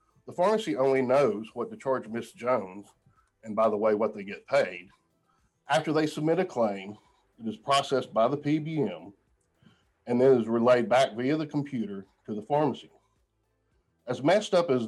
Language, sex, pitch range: English, male, 110-140 Hz